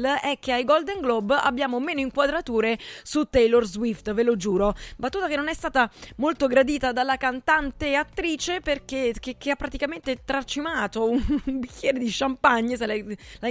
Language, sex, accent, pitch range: Italian, female, native, 220-275 Hz